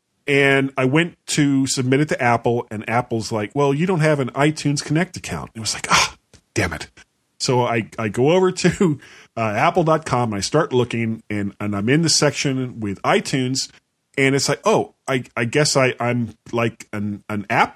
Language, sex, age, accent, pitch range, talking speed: English, male, 40-59, American, 110-150 Hz, 200 wpm